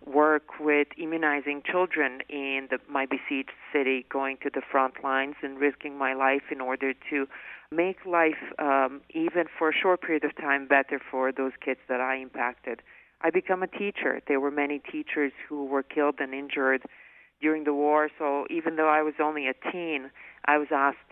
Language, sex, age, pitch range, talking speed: English, female, 40-59, 135-155 Hz, 180 wpm